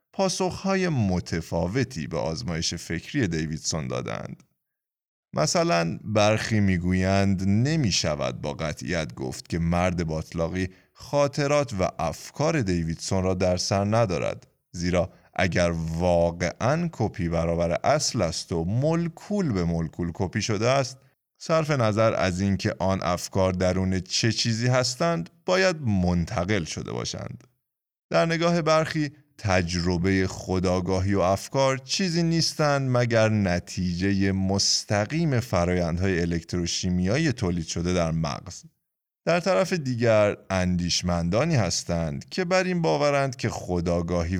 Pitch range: 85-130 Hz